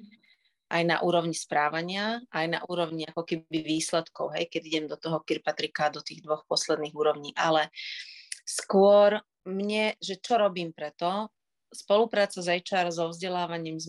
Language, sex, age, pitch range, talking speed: Slovak, female, 30-49, 165-200 Hz, 145 wpm